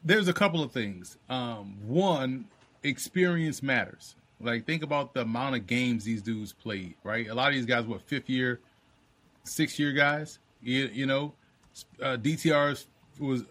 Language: English